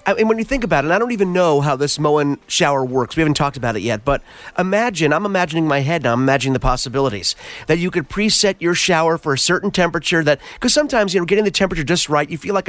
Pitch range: 140-180 Hz